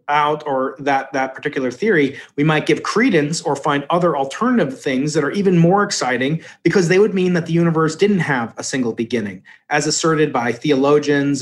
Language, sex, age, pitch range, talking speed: English, male, 30-49, 135-175 Hz, 190 wpm